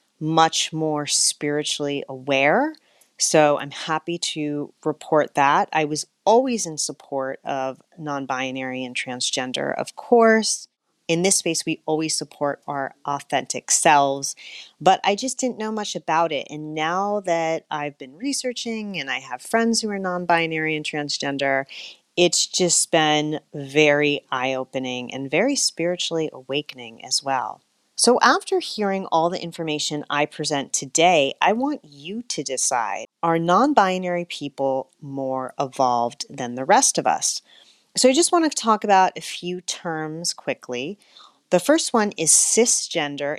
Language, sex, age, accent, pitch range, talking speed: English, female, 30-49, American, 140-185 Hz, 150 wpm